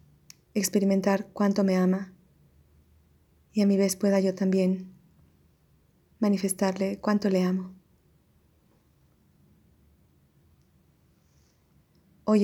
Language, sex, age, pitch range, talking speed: Spanish, female, 20-39, 180-210 Hz, 75 wpm